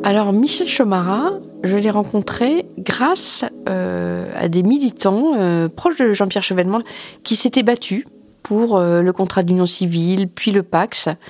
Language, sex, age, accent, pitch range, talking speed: French, female, 40-59, French, 160-210 Hz, 150 wpm